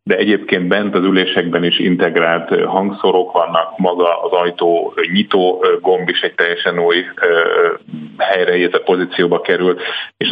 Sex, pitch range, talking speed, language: male, 90-120 Hz, 135 wpm, Hungarian